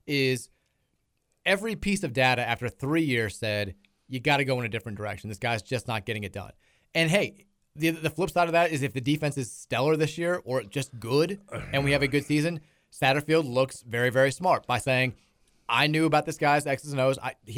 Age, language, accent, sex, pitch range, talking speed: 30-49, English, American, male, 115-145 Hz, 220 wpm